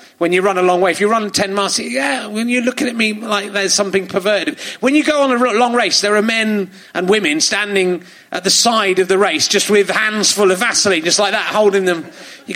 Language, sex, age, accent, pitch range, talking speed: English, male, 30-49, British, 185-240 Hz, 250 wpm